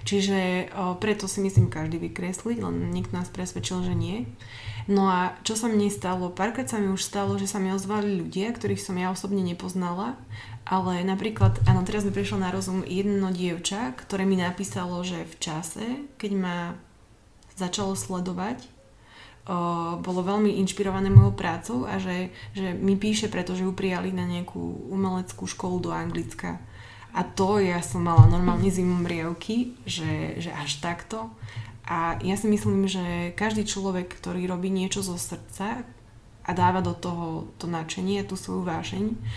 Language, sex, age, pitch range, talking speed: Slovak, female, 20-39, 115-195 Hz, 165 wpm